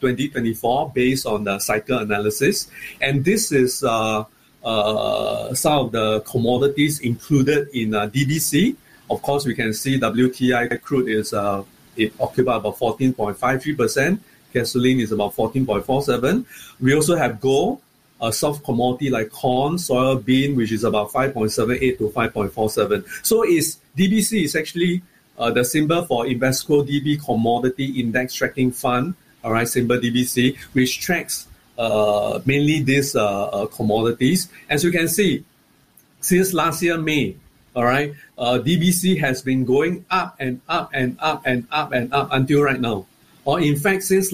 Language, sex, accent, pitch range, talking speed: English, male, Malaysian, 120-155 Hz, 150 wpm